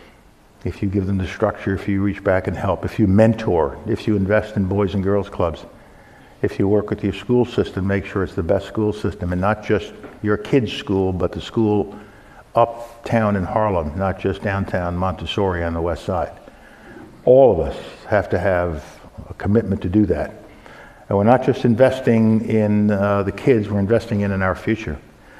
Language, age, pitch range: Korean, 60-79, 95-110 Hz